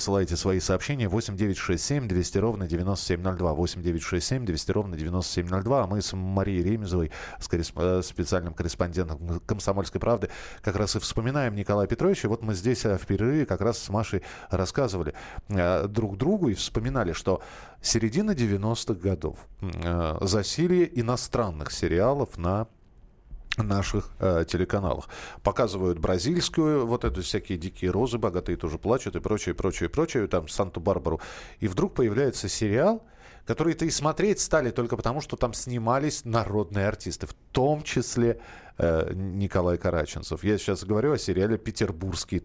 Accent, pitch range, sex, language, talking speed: native, 90-120 Hz, male, Russian, 130 wpm